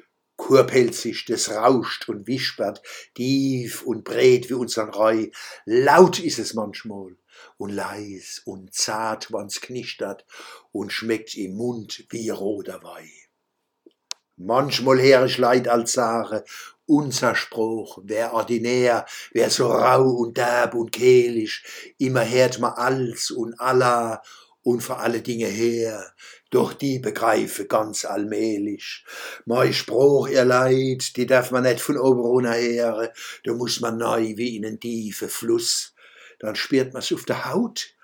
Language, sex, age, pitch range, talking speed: German, male, 60-79, 115-130 Hz, 135 wpm